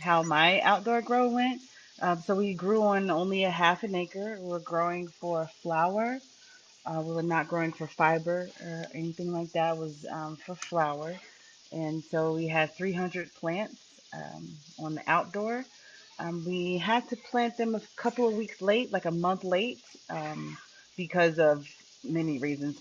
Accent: American